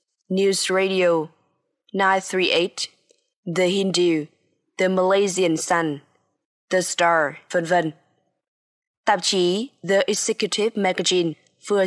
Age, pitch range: 20-39, 175-210 Hz